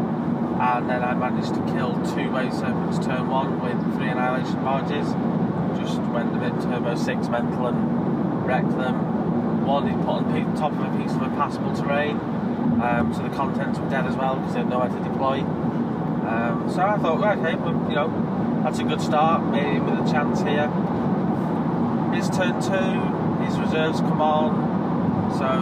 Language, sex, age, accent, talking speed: English, male, 20-39, British, 185 wpm